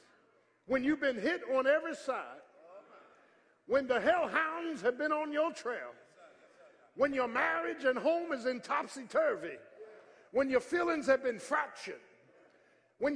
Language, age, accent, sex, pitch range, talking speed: English, 50-69, American, male, 260-330 Hz, 135 wpm